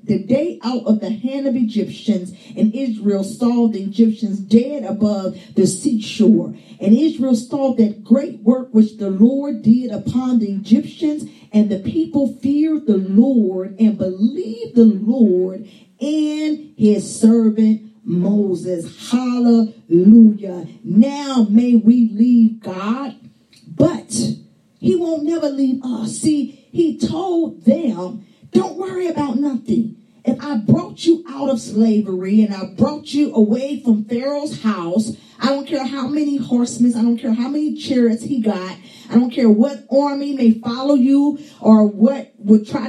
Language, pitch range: English, 215-275 Hz